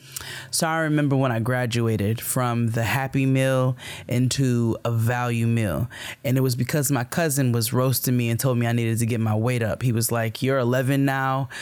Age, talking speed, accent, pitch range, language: 20-39, 200 wpm, American, 125-175 Hz, English